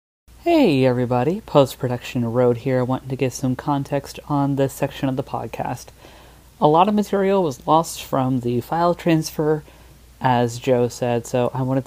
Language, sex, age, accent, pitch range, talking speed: English, female, 30-49, American, 125-155 Hz, 165 wpm